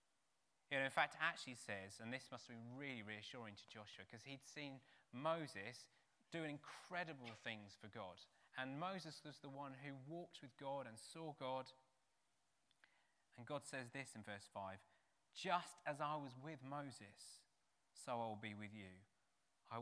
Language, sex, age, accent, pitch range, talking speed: English, male, 20-39, British, 115-155 Hz, 165 wpm